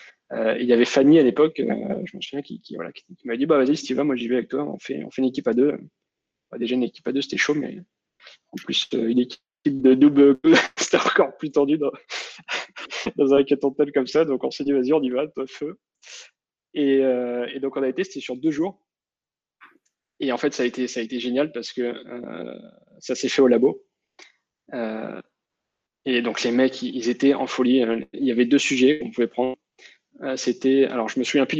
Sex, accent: male, French